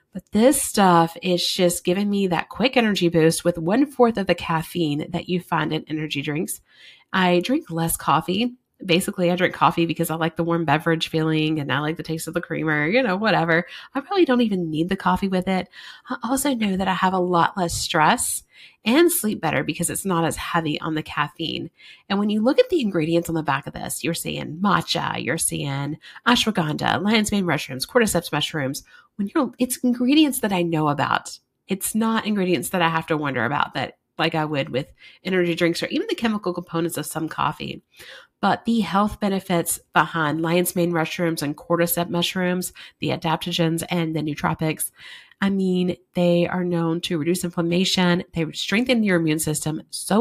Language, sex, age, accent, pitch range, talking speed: English, female, 30-49, American, 160-205 Hz, 195 wpm